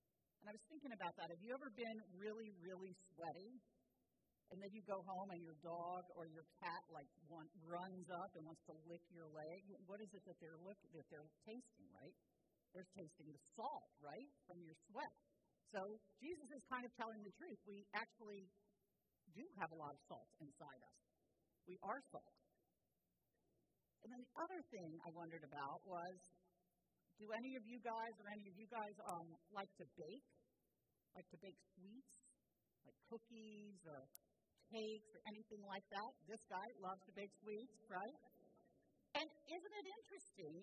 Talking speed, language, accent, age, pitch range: 175 wpm, English, American, 50-69, 180-245 Hz